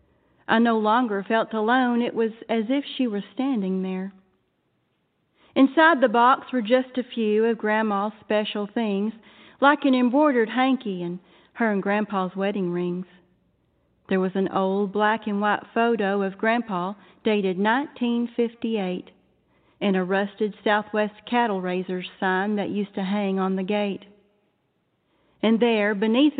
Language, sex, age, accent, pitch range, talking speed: English, female, 40-59, American, 200-235 Hz, 140 wpm